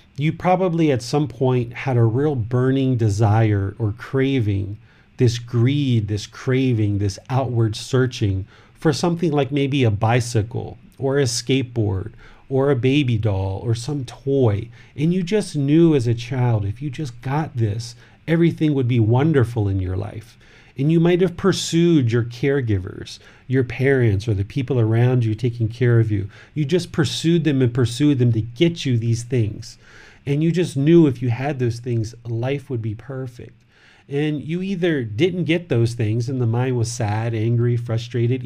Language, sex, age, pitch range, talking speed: English, male, 40-59, 115-145 Hz, 170 wpm